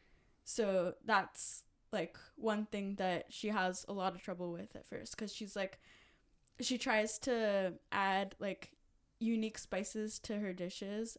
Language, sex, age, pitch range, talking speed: English, female, 10-29, 190-225 Hz, 150 wpm